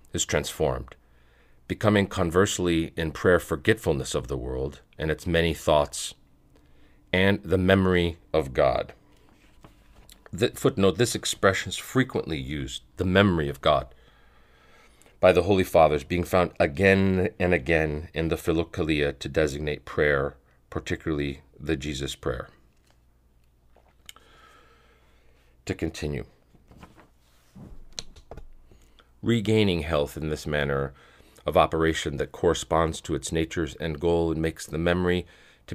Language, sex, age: English, male, 40-59